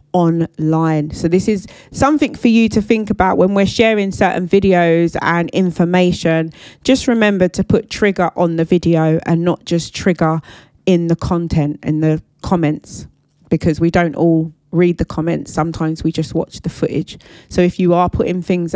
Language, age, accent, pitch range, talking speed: English, 20-39, British, 165-195 Hz, 175 wpm